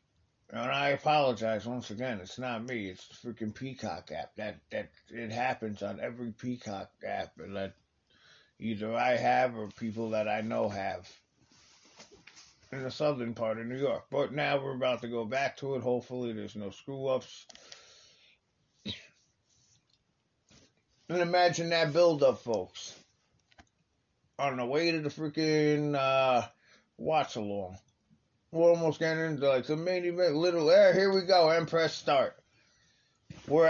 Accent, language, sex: American, English, male